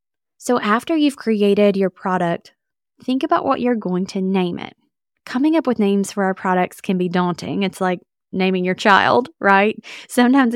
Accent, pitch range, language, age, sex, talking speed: American, 185-220 Hz, English, 20-39, female, 175 wpm